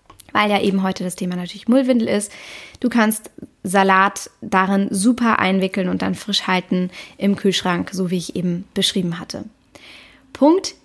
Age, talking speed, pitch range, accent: 20-39, 155 wpm, 190-250 Hz, German